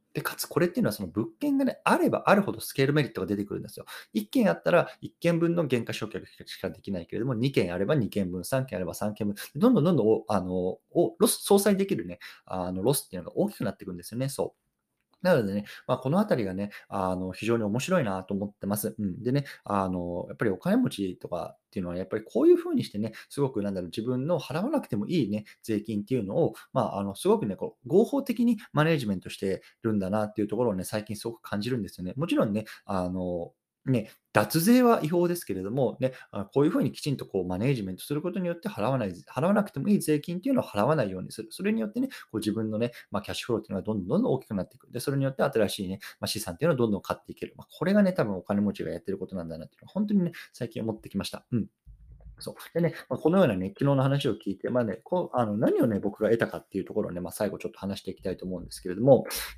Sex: male